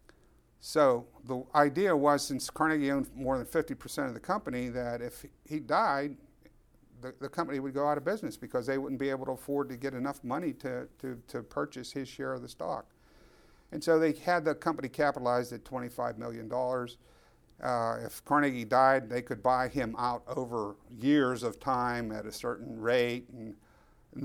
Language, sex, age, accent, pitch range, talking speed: English, male, 50-69, American, 120-145 Hz, 185 wpm